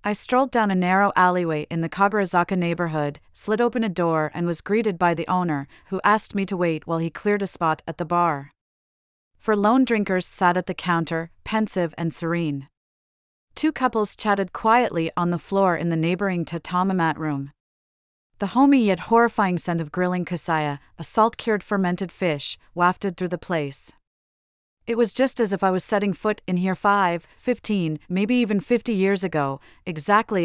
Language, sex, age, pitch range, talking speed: English, female, 40-59, 165-205 Hz, 180 wpm